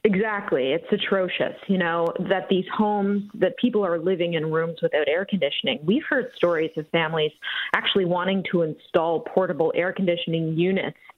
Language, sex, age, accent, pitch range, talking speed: English, female, 30-49, American, 165-215 Hz, 160 wpm